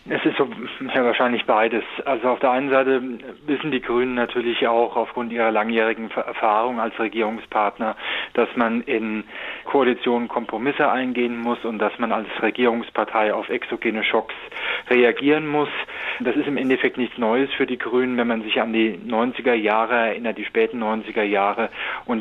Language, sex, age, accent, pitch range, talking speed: German, male, 20-39, German, 110-125 Hz, 165 wpm